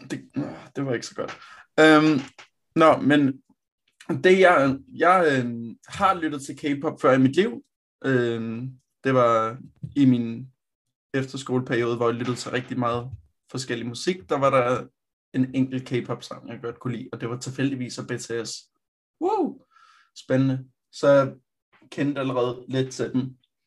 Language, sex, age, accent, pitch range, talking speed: Danish, male, 20-39, native, 120-140 Hz, 150 wpm